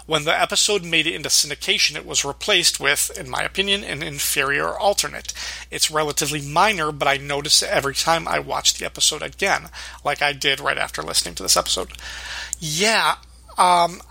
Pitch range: 145-175 Hz